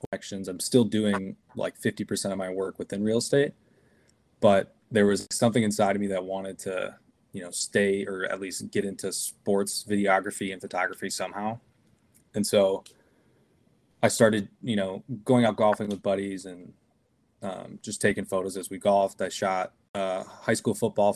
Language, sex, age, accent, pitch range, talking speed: English, male, 20-39, American, 95-105 Hz, 170 wpm